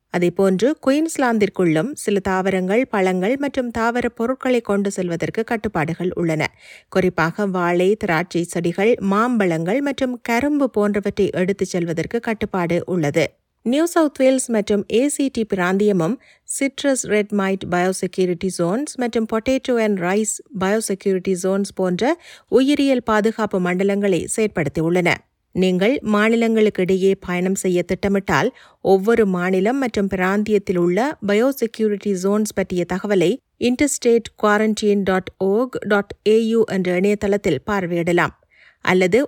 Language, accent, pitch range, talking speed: Tamil, native, 185-225 Hz, 105 wpm